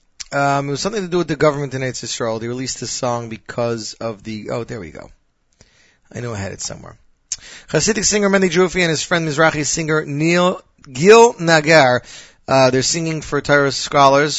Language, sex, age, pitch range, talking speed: English, male, 30-49, 125-165 Hz, 195 wpm